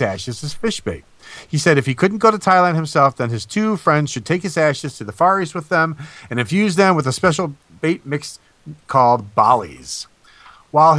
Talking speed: 205 wpm